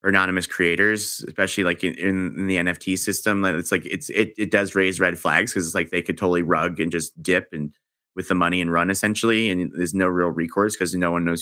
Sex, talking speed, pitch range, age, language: male, 240 wpm, 90-105 Hz, 30-49, English